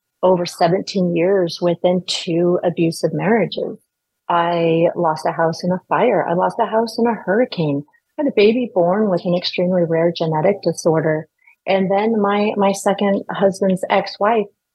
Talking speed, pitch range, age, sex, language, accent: 160 wpm, 170-205 Hz, 30-49, female, English, American